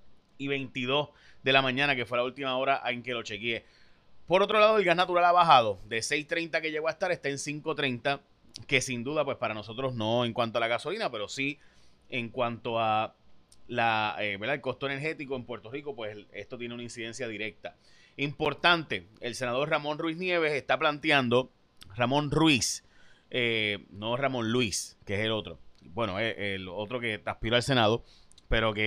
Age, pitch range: 30-49, 120-150 Hz